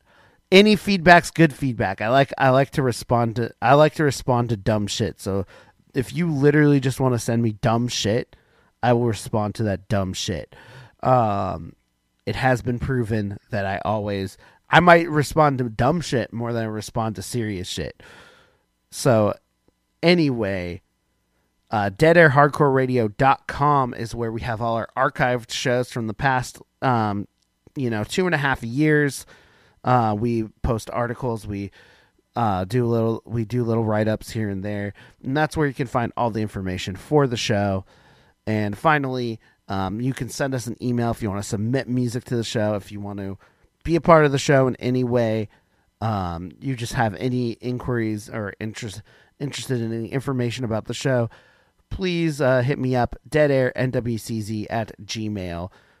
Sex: male